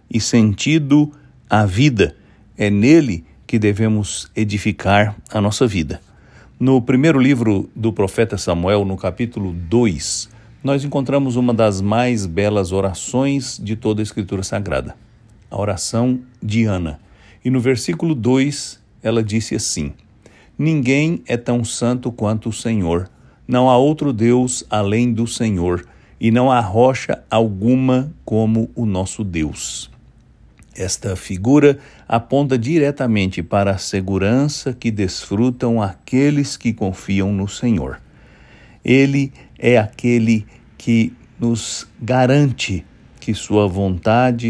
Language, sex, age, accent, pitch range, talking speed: English, male, 60-79, Brazilian, 100-125 Hz, 120 wpm